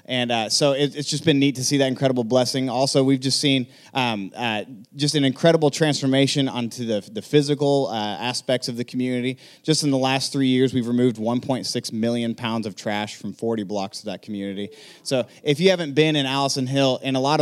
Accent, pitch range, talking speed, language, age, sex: American, 115-140 Hz, 210 wpm, English, 30-49, male